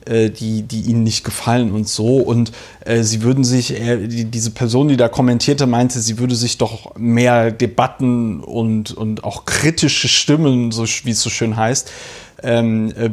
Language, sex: German, male